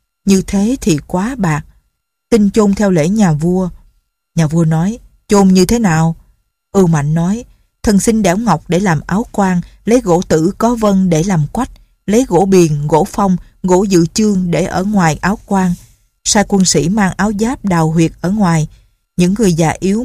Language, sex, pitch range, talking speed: Vietnamese, female, 160-205 Hz, 190 wpm